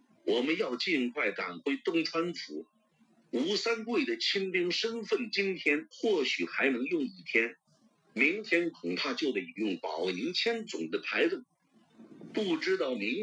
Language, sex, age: Chinese, male, 50-69